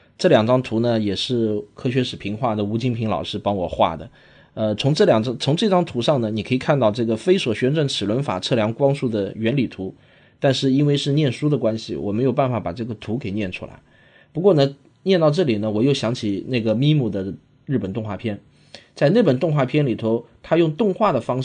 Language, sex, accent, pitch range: Chinese, male, native, 110-145 Hz